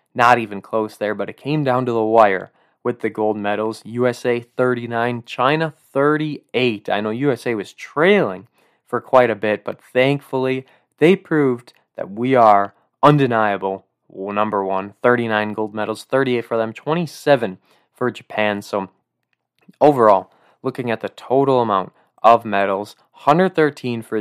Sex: male